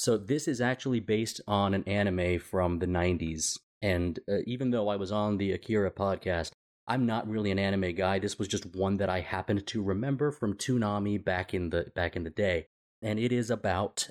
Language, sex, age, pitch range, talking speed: English, male, 30-49, 95-115 Hz, 195 wpm